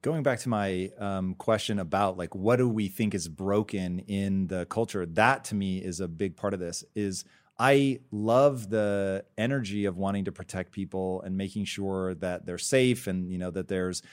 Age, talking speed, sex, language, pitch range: 30-49, 200 wpm, male, English, 95-110 Hz